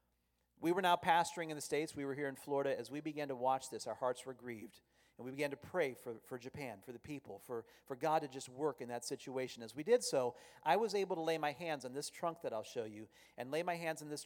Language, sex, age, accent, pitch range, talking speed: English, male, 40-59, American, 125-165 Hz, 280 wpm